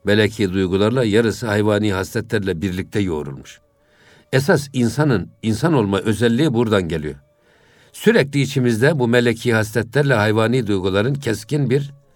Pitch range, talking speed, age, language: 95-125 Hz, 115 wpm, 60-79, Turkish